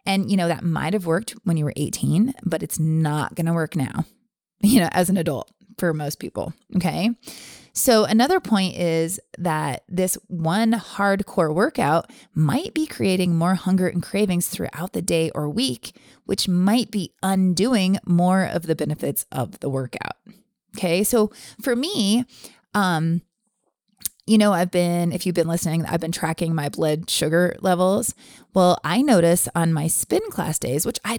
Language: English